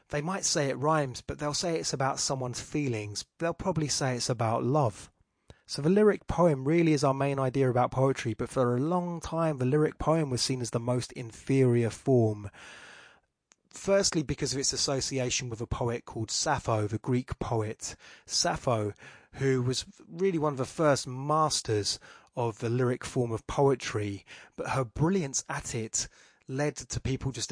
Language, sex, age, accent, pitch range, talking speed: English, male, 20-39, British, 115-140 Hz, 175 wpm